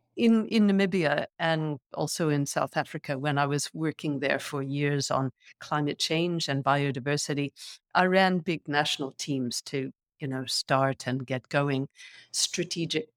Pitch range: 140-175 Hz